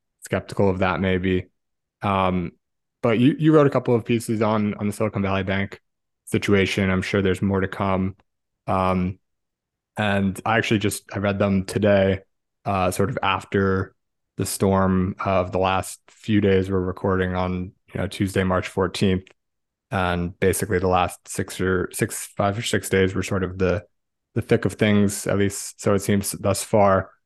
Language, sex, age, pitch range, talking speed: English, male, 20-39, 95-105 Hz, 175 wpm